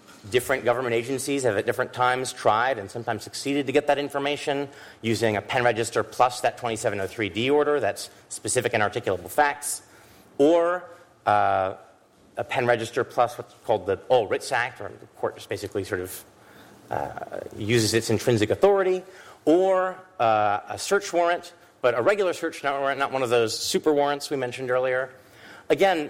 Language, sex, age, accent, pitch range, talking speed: English, male, 30-49, American, 110-145 Hz, 165 wpm